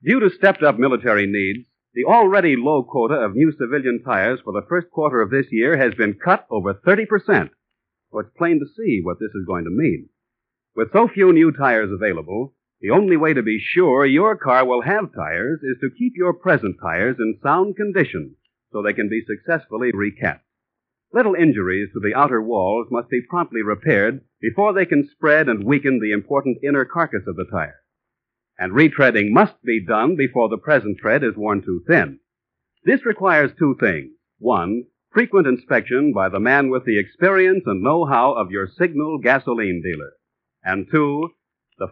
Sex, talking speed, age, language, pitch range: male, 185 wpm, 50-69, English, 110-180 Hz